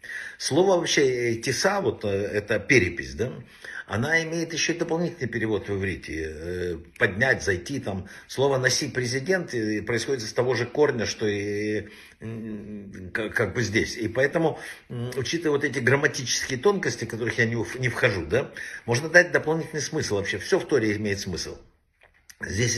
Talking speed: 140 wpm